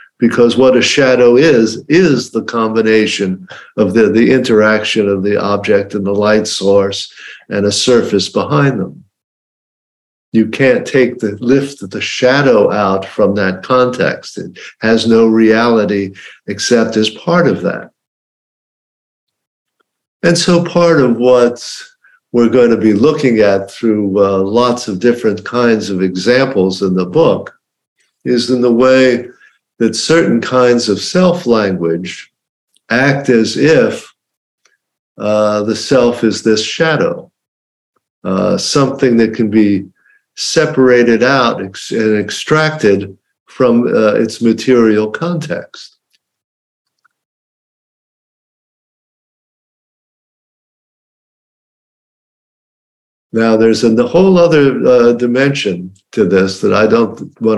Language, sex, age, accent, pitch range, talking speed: English, male, 50-69, American, 105-130 Hz, 115 wpm